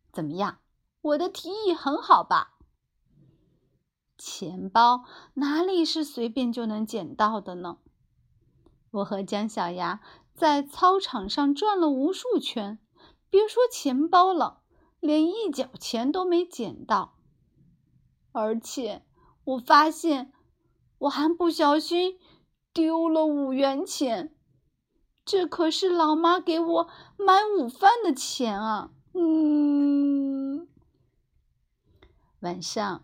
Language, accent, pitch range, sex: Chinese, native, 215-330 Hz, female